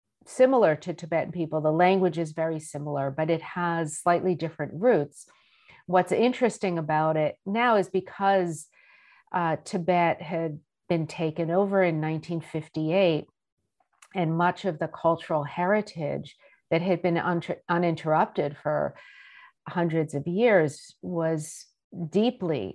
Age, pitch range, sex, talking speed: 50-69, 160-190 Hz, female, 120 wpm